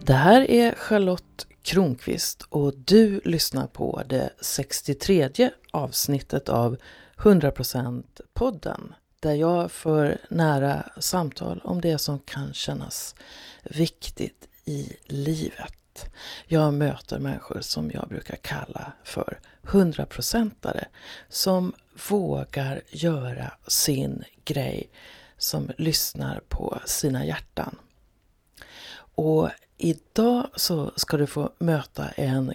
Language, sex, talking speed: Swedish, female, 100 wpm